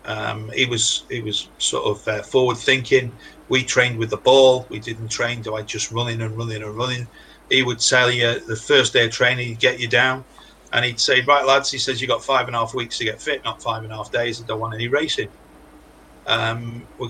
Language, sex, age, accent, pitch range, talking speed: English, male, 40-59, British, 115-135 Hz, 245 wpm